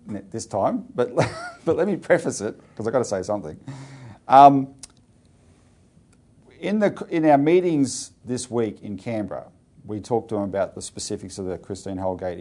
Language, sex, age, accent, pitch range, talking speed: English, male, 40-59, Australian, 100-135 Hz, 175 wpm